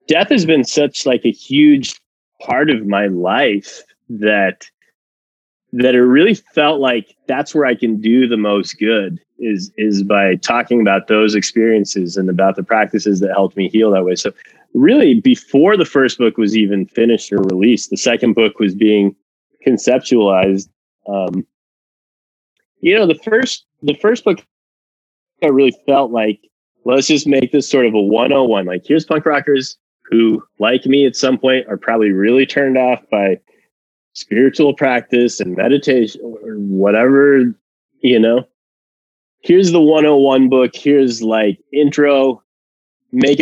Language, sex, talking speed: English, male, 155 wpm